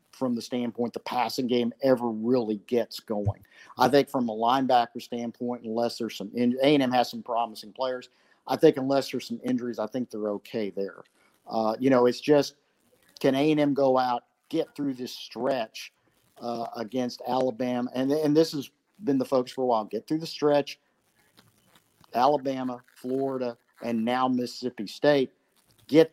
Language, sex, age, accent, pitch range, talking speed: English, male, 50-69, American, 120-145 Hz, 170 wpm